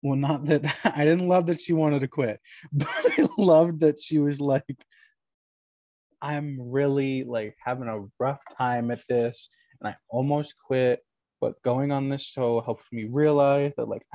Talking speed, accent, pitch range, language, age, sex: 175 wpm, American, 120-150 Hz, English, 20-39, male